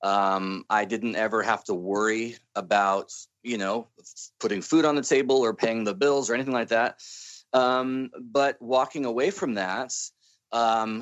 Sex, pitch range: male, 110-125 Hz